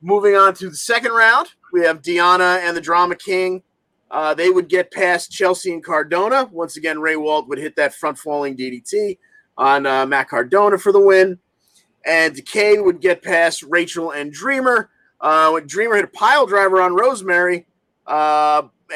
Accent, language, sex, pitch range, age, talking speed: American, English, male, 155-205 Hz, 30-49, 175 wpm